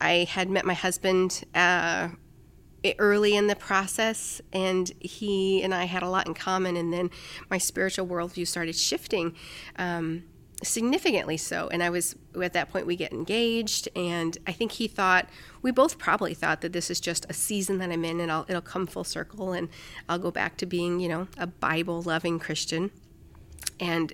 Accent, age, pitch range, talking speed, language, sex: American, 40-59, 170-200 Hz, 185 wpm, English, female